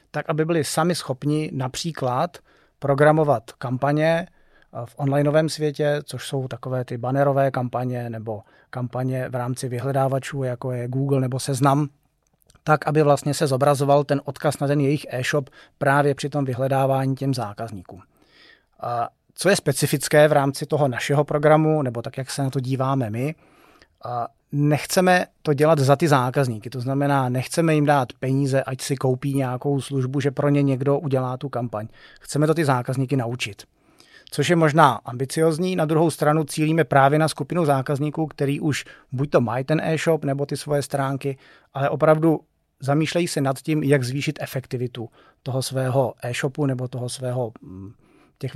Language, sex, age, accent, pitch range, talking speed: Czech, male, 30-49, native, 130-150 Hz, 160 wpm